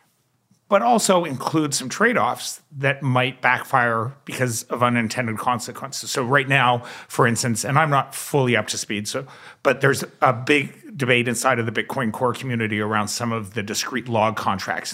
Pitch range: 120-140 Hz